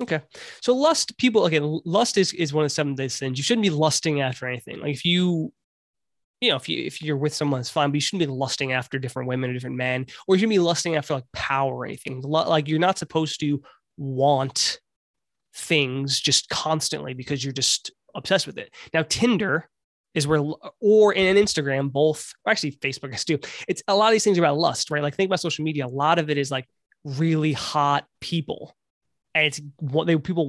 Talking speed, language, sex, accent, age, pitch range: 220 wpm, English, male, American, 20-39, 140-170 Hz